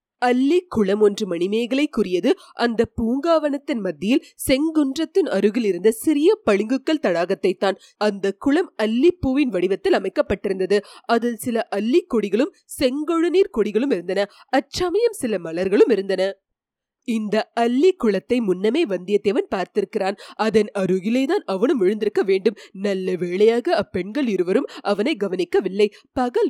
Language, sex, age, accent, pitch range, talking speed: English, female, 20-39, Indian, 205-335 Hz, 120 wpm